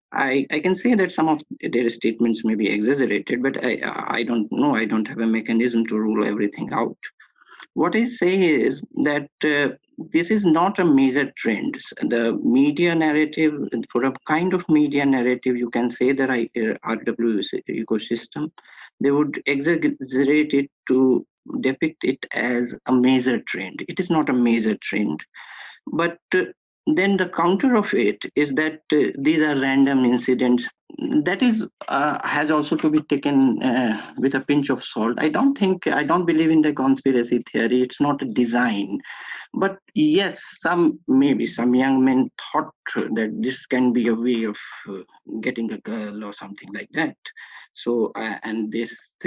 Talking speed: 170 wpm